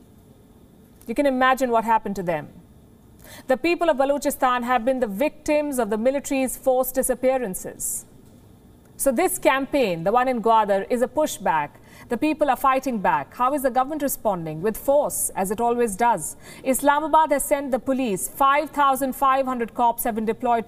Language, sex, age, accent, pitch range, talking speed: English, female, 50-69, Indian, 235-290 Hz, 170 wpm